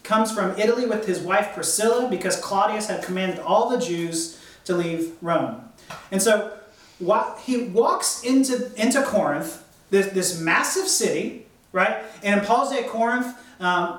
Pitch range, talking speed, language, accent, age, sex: 180-245 Hz, 155 wpm, English, American, 30-49, male